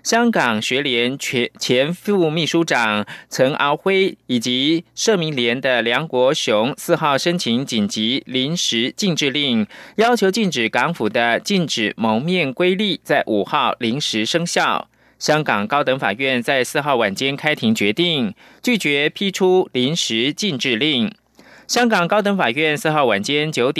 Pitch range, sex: 125-185 Hz, male